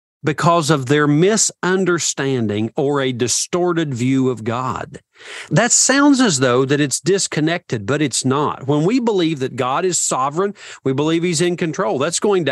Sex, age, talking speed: male, 40-59, 165 wpm